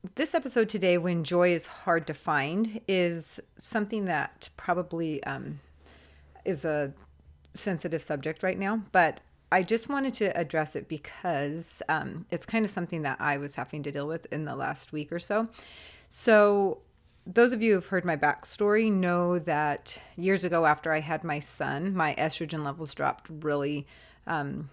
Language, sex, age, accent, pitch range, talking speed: English, female, 30-49, American, 150-185 Hz, 165 wpm